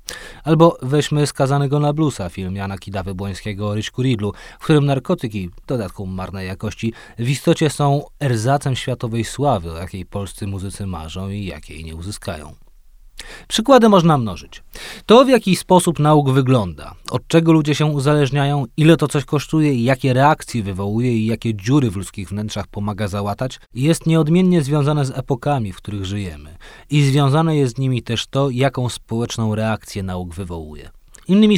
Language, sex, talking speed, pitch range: Polish, male, 155 wpm, 100-150 Hz